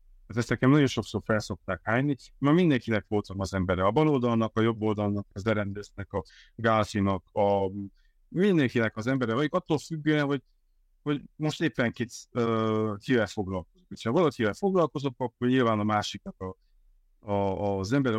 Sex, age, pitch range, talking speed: male, 50-69, 100-135 Hz, 150 wpm